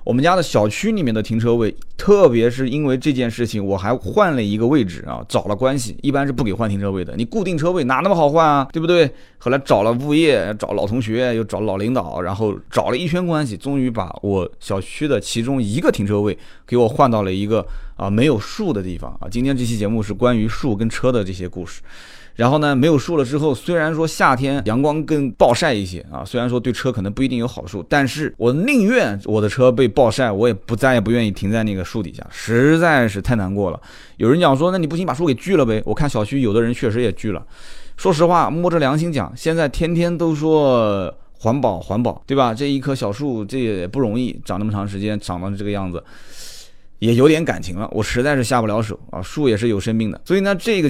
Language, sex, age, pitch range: Chinese, male, 20-39, 105-145 Hz